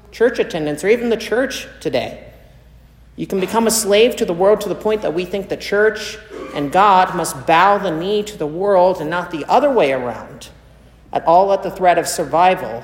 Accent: American